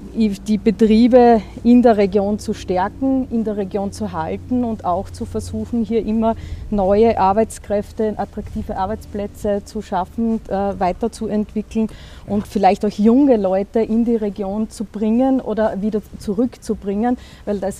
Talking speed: 135 wpm